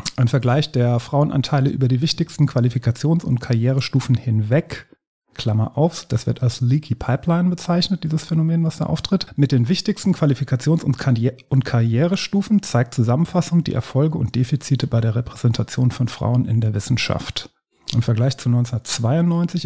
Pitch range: 120-150 Hz